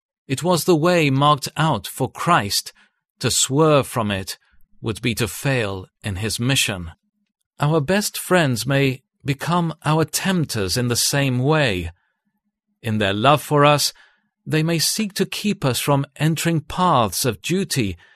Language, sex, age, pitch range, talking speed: English, male, 40-59, 120-165 Hz, 150 wpm